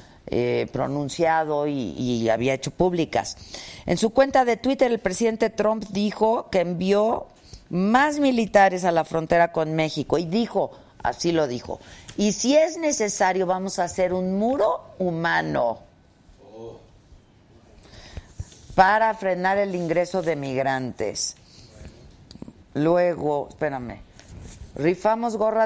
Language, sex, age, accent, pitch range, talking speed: Spanish, female, 50-69, Mexican, 150-200 Hz, 115 wpm